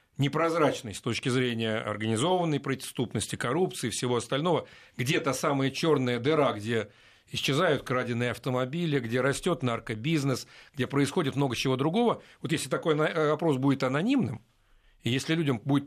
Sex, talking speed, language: male, 135 wpm, Russian